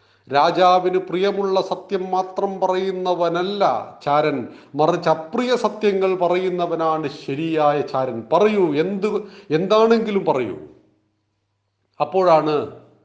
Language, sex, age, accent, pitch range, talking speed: Malayalam, male, 40-59, native, 150-200 Hz, 80 wpm